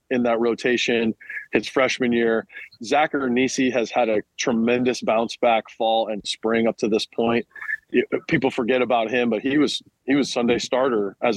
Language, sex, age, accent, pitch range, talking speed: English, male, 20-39, American, 115-135 Hz, 175 wpm